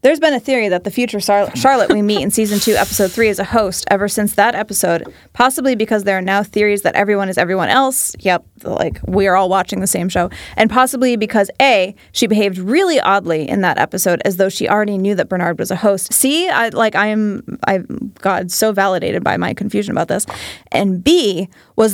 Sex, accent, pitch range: female, American, 195-230 Hz